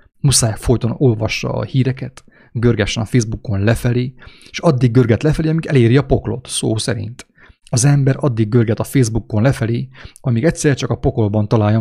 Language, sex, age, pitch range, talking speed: English, male, 30-49, 110-130 Hz, 165 wpm